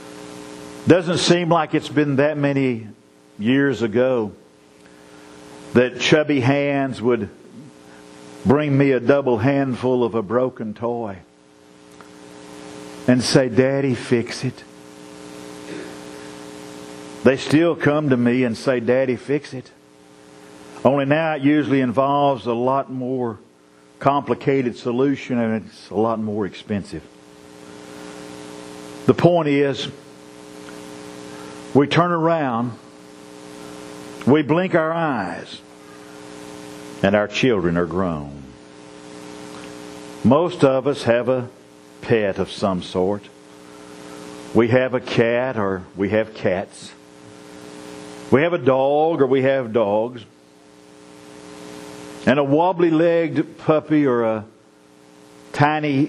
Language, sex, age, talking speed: English, male, 50-69, 105 wpm